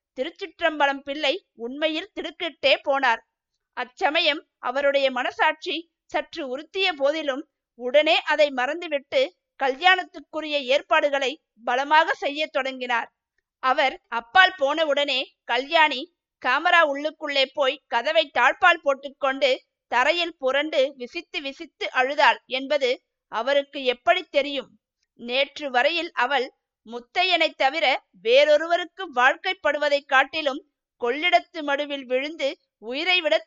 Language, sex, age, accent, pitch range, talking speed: Tamil, female, 50-69, native, 265-325 Hz, 90 wpm